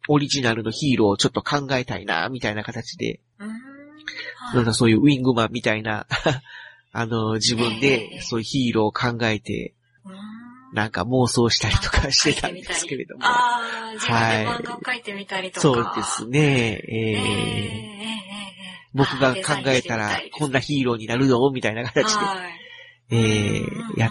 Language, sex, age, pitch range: Japanese, male, 40-59, 115-165 Hz